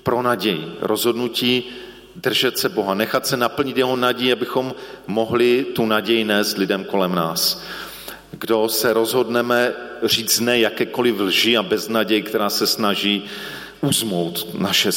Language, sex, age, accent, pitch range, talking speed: Czech, male, 40-59, native, 105-130 Hz, 130 wpm